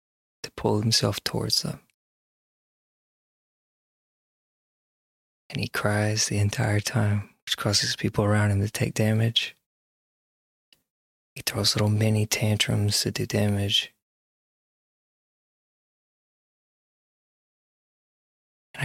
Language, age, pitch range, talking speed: English, 20-39, 100-115 Hz, 90 wpm